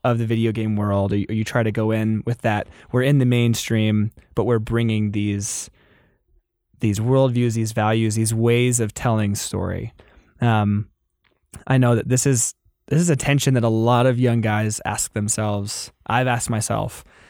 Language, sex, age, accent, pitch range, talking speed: English, male, 20-39, American, 110-125 Hz, 175 wpm